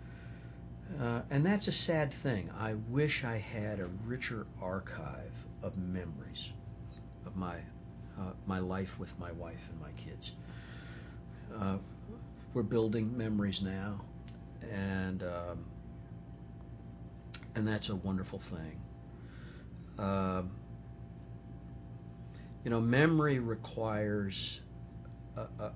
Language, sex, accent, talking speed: English, male, American, 105 wpm